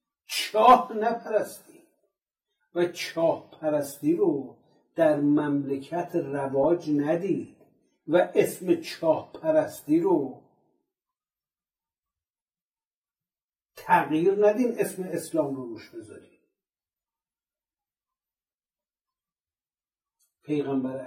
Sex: male